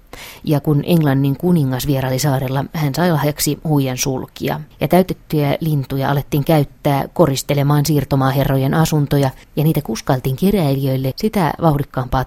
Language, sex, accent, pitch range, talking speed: Finnish, female, native, 130-165 Hz, 120 wpm